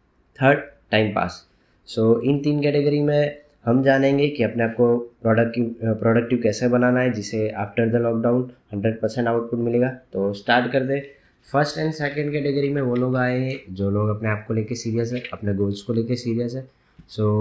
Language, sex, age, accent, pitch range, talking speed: Hindi, male, 20-39, native, 110-125 Hz, 195 wpm